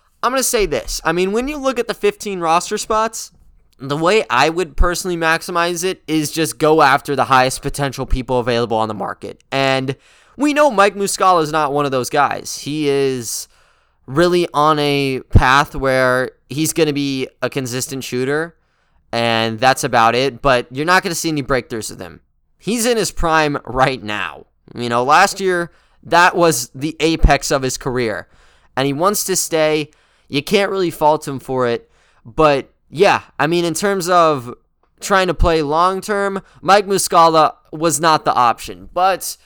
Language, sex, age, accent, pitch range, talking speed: English, male, 20-39, American, 130-170 Hz, 185 wpm